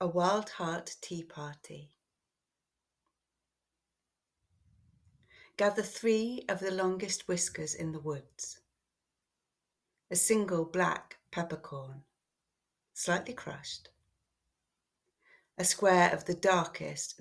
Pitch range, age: 135-195 Hz, 40-59